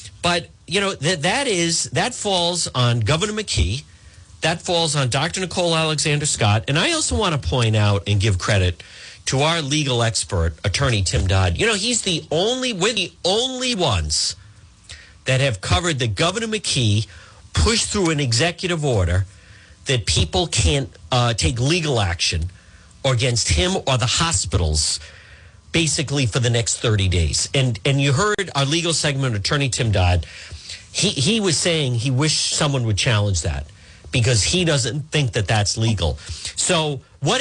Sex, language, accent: male, English, American